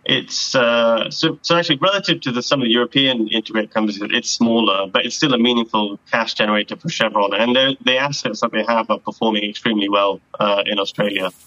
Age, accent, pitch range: 20-39, British, 105-120 Hz